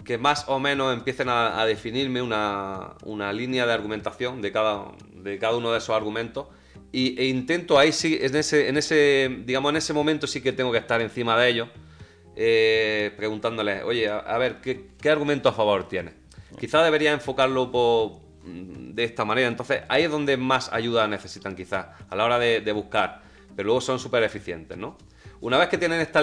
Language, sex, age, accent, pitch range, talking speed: Spanish, male, 30-49, Spanish, 100-130 Hz, 195 wpm